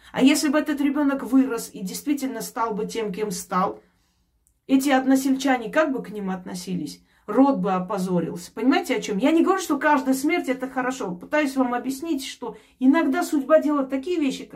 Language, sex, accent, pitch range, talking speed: Russian, female, native, 195-265 Hz, 175 wpm